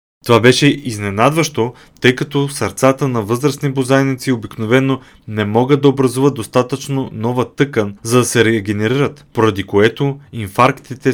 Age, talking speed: 30-49, 130 wpm